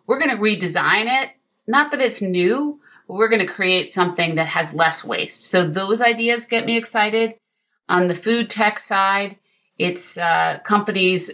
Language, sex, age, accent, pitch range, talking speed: English, female, 30-49, American, 165-195 Hz, 175 wpm